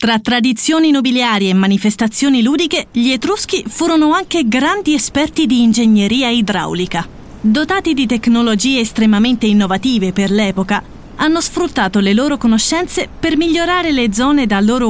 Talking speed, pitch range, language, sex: 135 wpm, 210-275 Hz, Italian, female